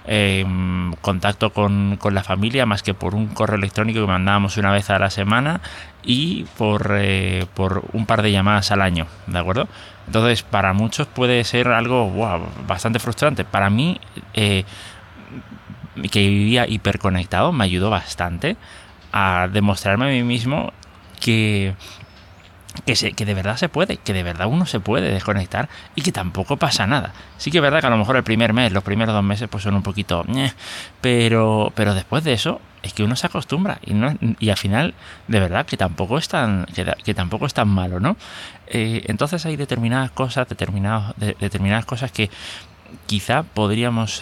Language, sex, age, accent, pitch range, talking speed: Spanish, male, 30-49, Spanish, 95-115 Hz, 180 wpm